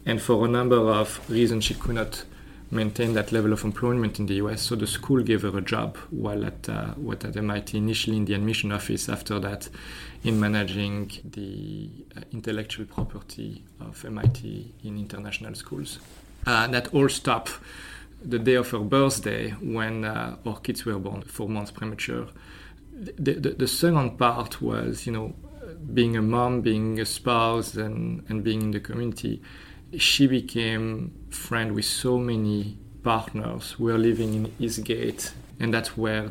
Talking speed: 165 wpm